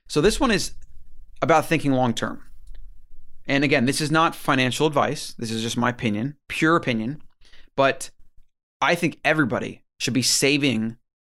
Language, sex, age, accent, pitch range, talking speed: English, male, 30-49, American, 115-135 Hz, 150 wpm